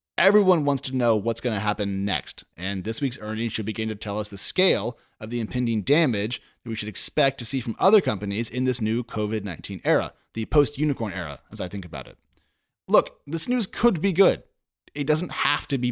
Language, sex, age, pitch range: English, male, 30-49, 110-150 Hz